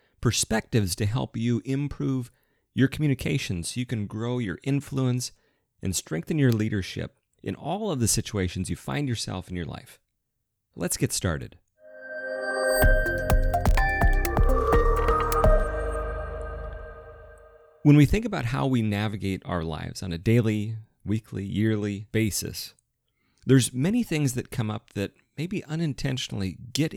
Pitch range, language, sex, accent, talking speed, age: 100-135 Hz, English, male, American, 125 wpm, 40-59